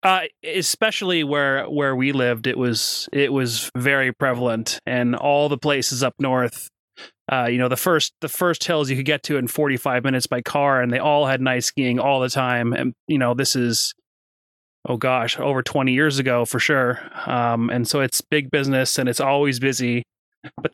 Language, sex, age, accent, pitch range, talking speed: English, male, 30-49, American, 125-150 Hz, 195 wpm